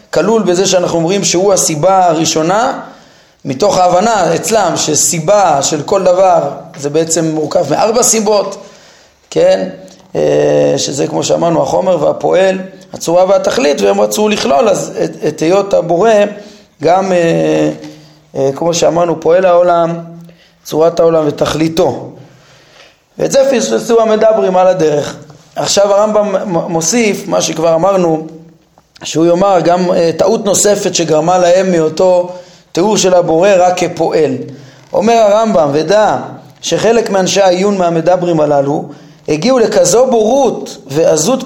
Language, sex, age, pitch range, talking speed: Hebrew, male, 30-49, 165-225 Hz, 115 wpm